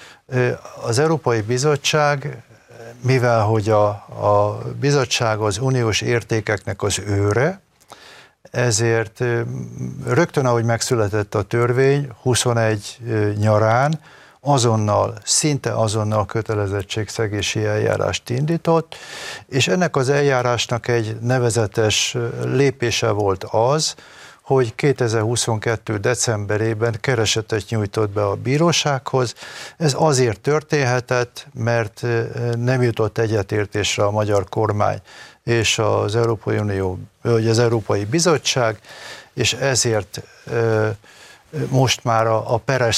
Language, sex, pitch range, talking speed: Hungarian, male, 110-130 Hz, 95 wpm